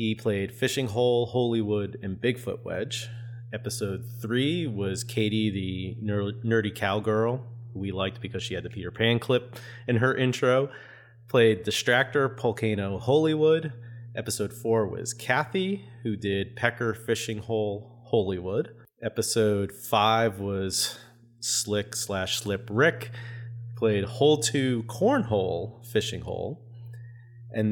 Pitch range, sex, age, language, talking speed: 105-120 Hz, male, 30-49, English, 125 wpm